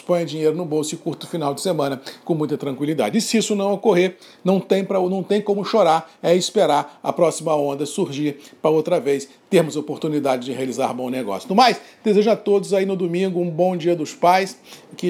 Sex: male